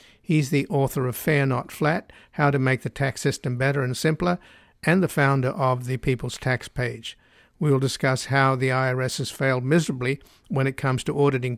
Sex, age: male, 50-69